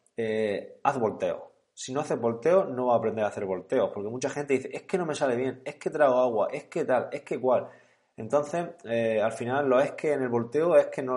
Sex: male